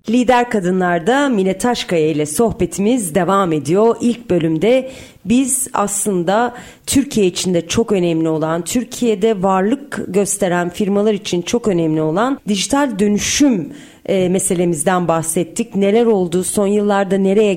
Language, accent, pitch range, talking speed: Turkish, native, 180-240 Hz, 120 wpm